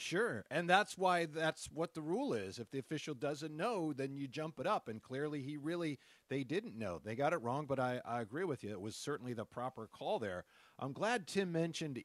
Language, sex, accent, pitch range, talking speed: English, male, American, 120-155 Hz, 235 wpm